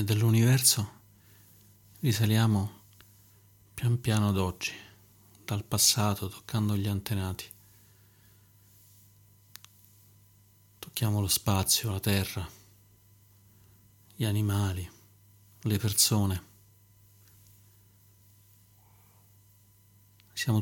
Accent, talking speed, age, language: native, 60 wpm, 40-59, Italian